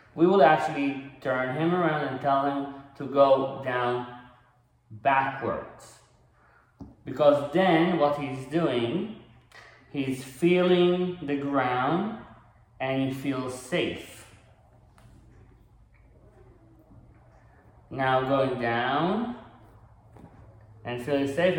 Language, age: English, 30-49